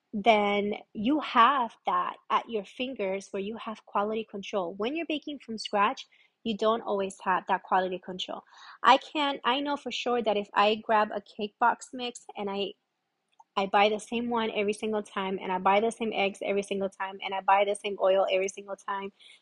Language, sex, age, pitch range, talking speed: English, female, 20-39, 200-240 Hz, 205 wpm